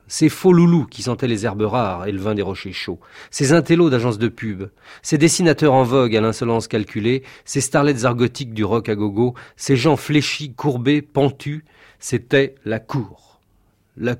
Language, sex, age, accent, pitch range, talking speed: French, male, 40-59, French, 110-130 Hz, 180 wpm